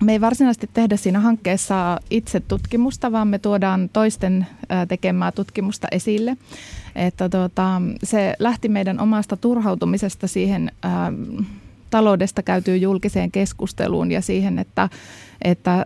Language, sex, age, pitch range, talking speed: Finnish, female, 30-49, 175-205 Hz, 110 wpm